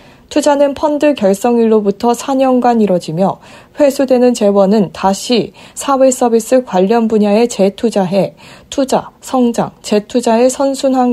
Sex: female